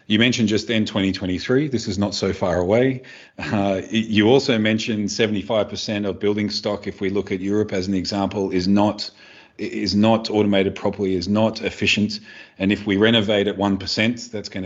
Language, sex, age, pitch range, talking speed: English, male, 40-59, 95-110 Hz, 180 wpm